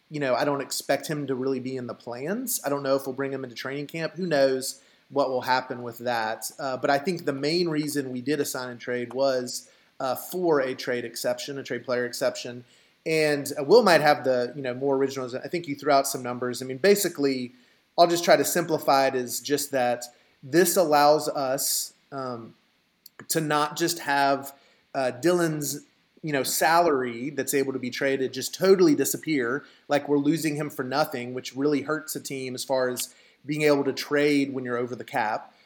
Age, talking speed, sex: 30-49, 205 wpm, male